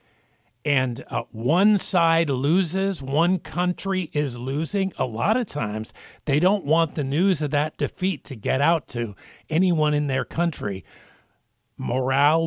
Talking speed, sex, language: 145 wpm, male, English